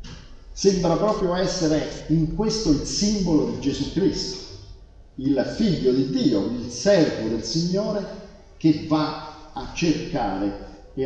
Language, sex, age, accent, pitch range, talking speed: Italian, male, 50-69, native, 110-170 Hz, 125 wpm